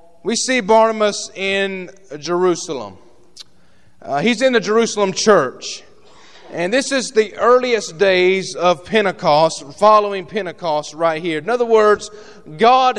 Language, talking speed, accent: English, 125 wpm, American